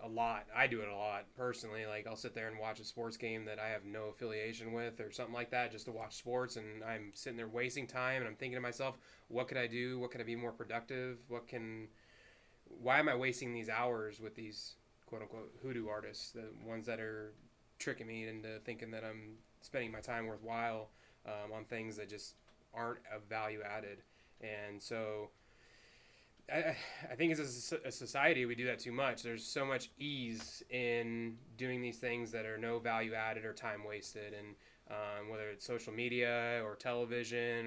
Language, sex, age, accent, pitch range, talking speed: English, male, 20-39, American, 110-125 Hz, 195 wpm